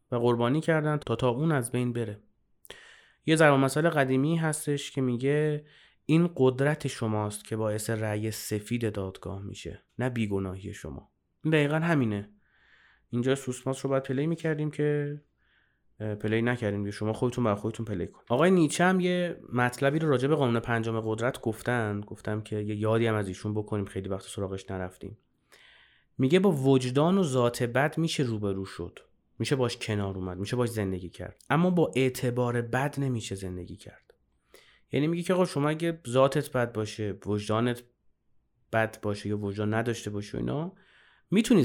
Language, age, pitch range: Persian, 30-49, 105-145 Hz